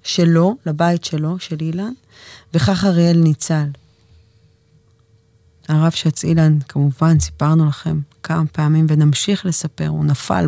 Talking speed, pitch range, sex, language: 115 wpm, 140-180 Hz, female, English